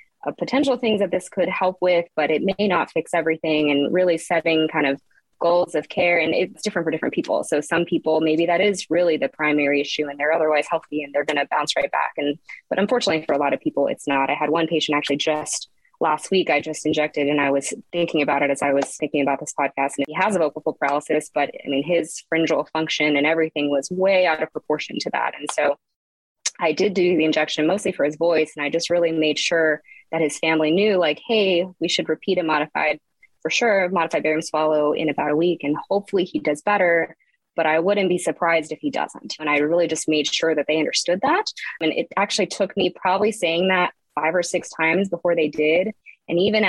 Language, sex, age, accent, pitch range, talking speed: English, female, 20-39, American, 150-180 Hz, 235 wpm